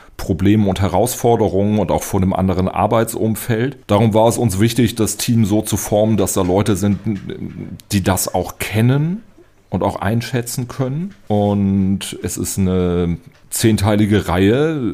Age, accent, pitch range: 40-59, German, 90-110 Hz